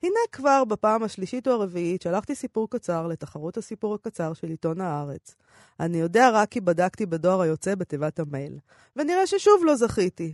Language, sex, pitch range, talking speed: Hebrew, female, 170-230 Hz, 165 wpm